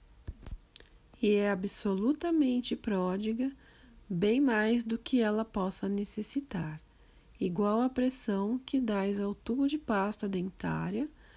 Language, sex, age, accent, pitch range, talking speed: Portuguese, female, 40-59, Brazilian, 200-255 Hz, 110 wpm